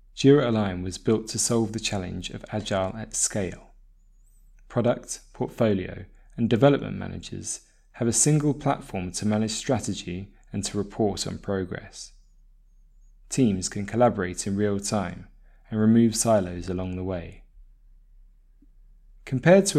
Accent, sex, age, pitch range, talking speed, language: British, male, 20-39, 90-120 Hz, 130 wpm, English